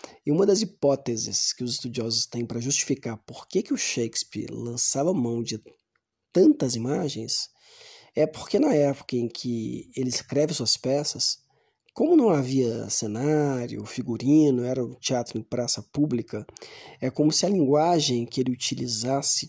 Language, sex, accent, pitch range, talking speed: Portuguese, male, Brazilian, 120-150 Hz, 150 wpm